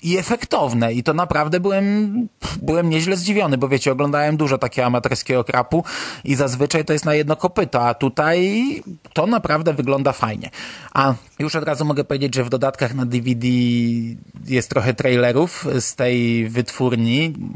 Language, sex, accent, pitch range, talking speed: Polish, male, native, 125-160 Hz, 155 wpm